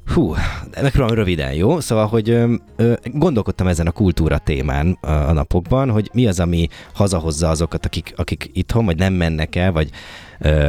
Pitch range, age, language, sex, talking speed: 80-100 Hz, 20-39, Hungarian, male, 180 wpm